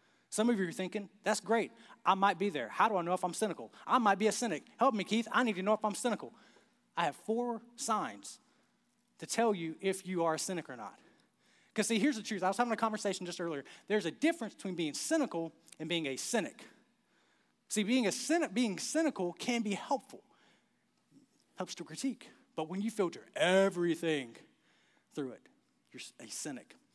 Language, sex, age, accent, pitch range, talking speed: English, male, 30-49, American, 190-245 Hz, 205 wpm